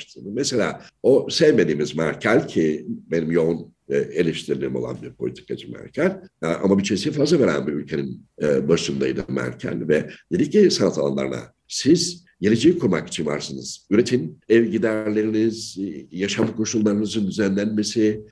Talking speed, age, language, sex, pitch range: 120 wpm, 60-79, Turkish, male, 85-115 Hz